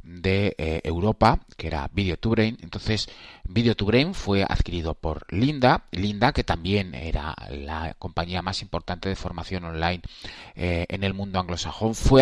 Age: 30-49